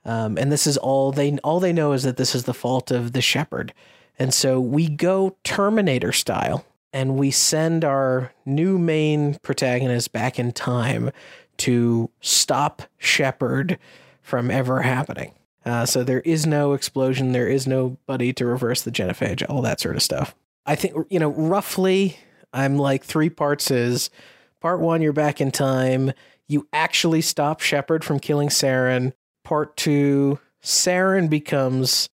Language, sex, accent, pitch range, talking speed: English, male, American, 125-145 Hz, 160 wpm